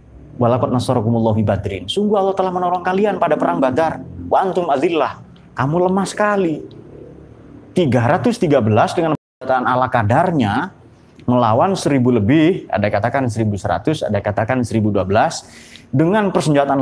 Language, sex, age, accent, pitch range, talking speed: Indonesian, male, 30-49, native, 110-155 Hz, 120 wpm